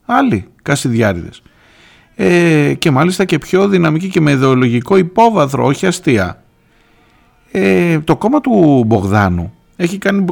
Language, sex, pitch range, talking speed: Greek, male, 105-145 Hz, 120 wpm